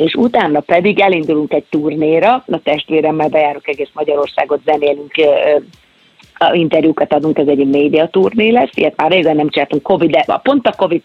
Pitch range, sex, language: 150-170 Hz, female, Hungarian